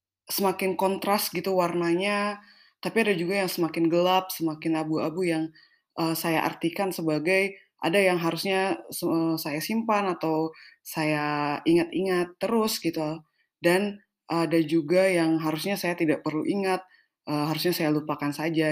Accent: native